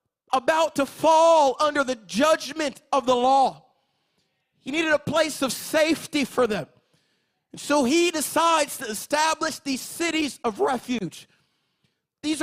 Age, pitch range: 30-49, 275-325 Hz